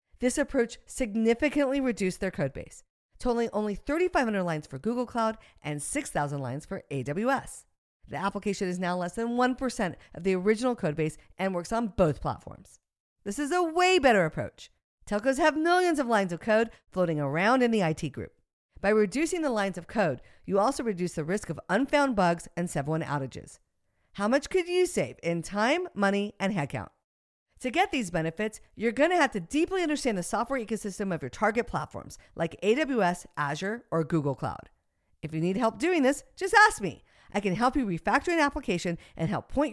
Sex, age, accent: female, 50-69, American